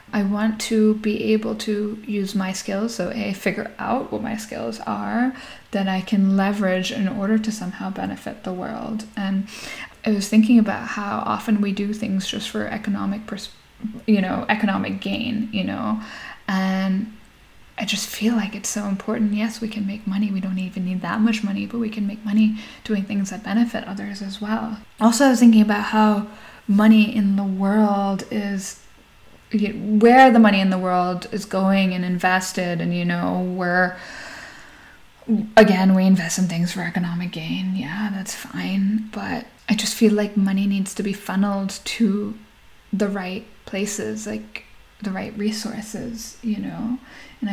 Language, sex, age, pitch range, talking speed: English, female, 10-29, 195-220 Hz, 175 wpm